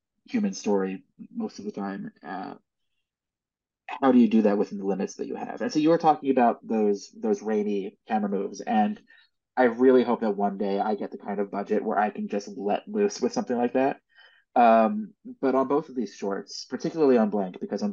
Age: 20-39